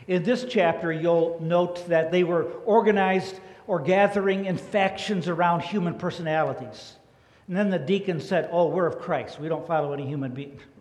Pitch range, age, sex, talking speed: 160-195 Hz, 60-79, male, 170 wpm